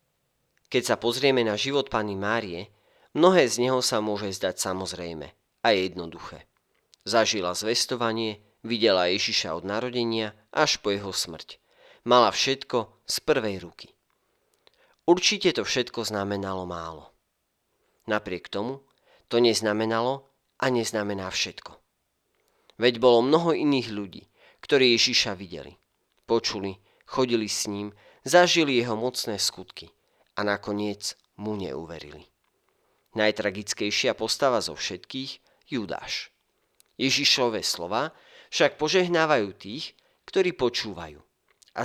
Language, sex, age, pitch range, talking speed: Slovak, male, 40-59, 100-130 Hz, 110 wpm